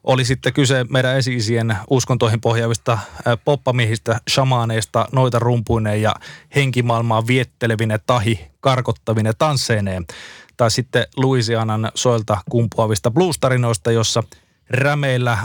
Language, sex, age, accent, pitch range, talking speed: Finnish, male, 20-39, native, 110-125 Hz, 95 wpm